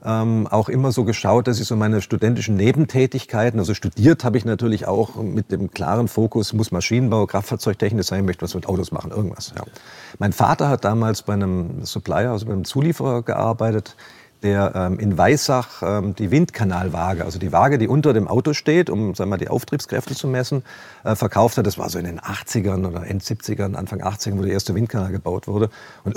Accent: German